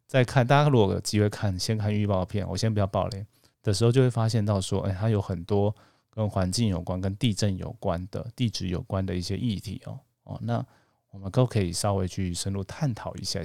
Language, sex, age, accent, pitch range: Chinese, male, 20-39, native, 100-125 Hz